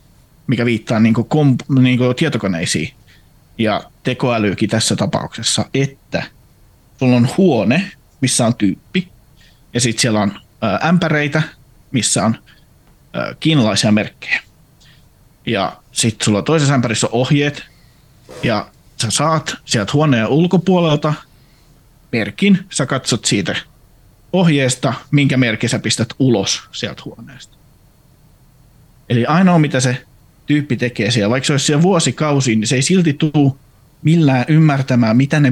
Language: Finnish